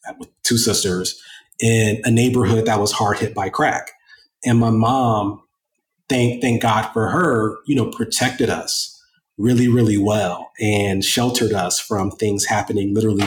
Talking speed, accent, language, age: 155 wpm, American, English, 30-49